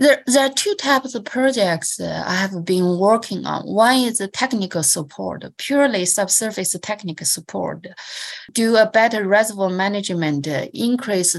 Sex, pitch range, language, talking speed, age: female, 180-230 Hz, English, 135 wpm, 20-39